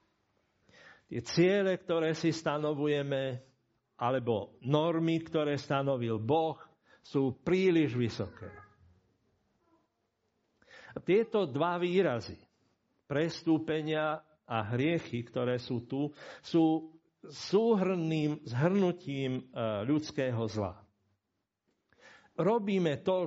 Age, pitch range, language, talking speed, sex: 60-79, 115-170 Hz, Slovak, 75 wpm, male